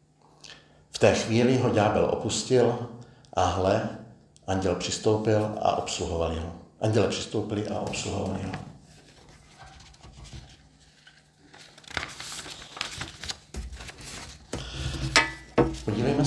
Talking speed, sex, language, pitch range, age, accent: 70 wpm, male, Czech, 95-130 Hz, 60-79, native